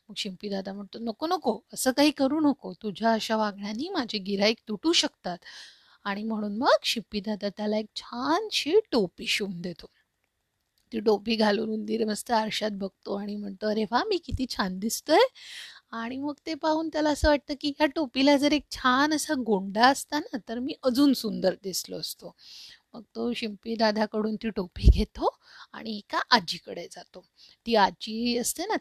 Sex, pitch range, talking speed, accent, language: female, 205-265 Hz, 165 wpm, native, Marathi